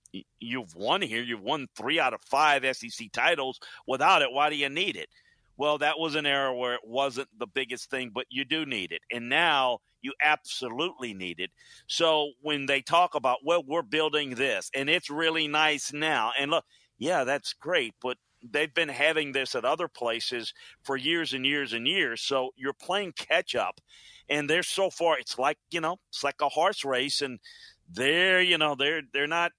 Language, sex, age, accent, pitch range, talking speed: English, male, 50-69, American, 130-170 Hz, 200 wpm